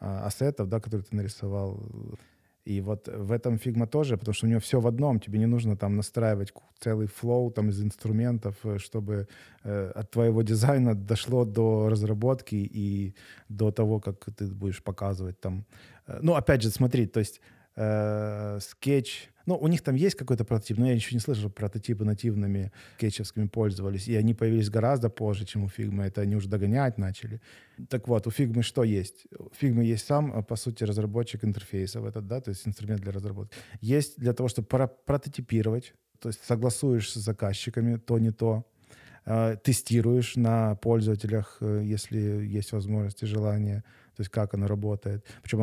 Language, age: Ukrainian, 20-39